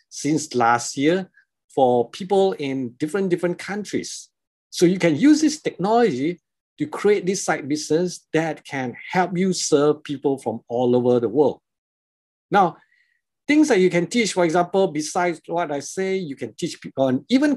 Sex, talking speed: male, 165 wpm